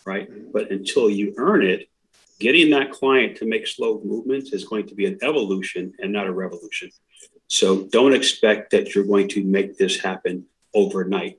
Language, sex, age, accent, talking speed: English, male, 40-59, American, 180 wpm